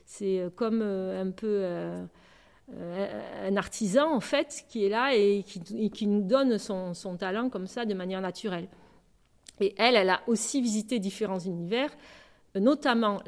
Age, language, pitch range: 50-69, French, 190-235 Hz